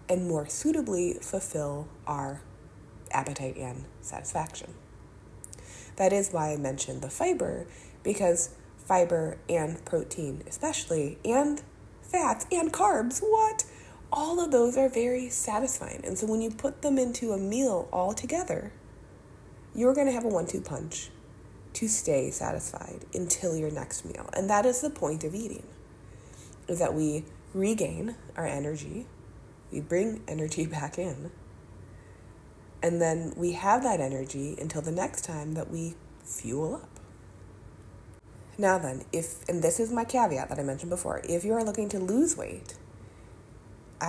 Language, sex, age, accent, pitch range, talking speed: English, female, 20-39, American, 135-220 Hz, 145 wpm